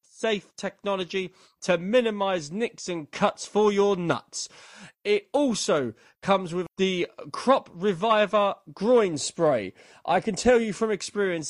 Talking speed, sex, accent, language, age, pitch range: 130 wpm, male, British, English, 30-49, 155-205 Hz